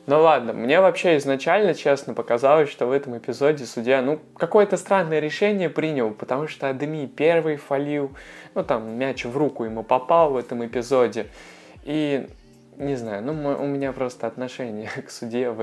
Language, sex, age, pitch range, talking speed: Russian, male, 20-39, 115-140 Hz, 165 wpm